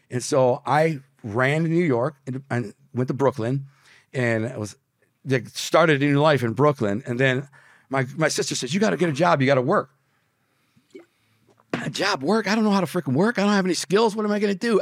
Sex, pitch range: male, 120-150 Hz